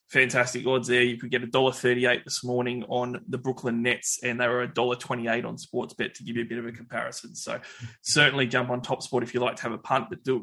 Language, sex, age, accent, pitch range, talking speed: English, male, 20-39, Australian, 115-130 Hz, 255 wpm